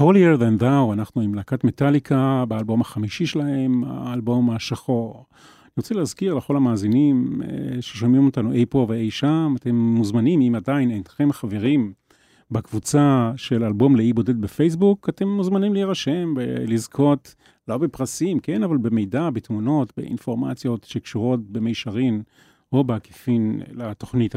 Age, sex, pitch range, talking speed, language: 40-59, male, 115-145 Hz, 130 wpm, Hebrew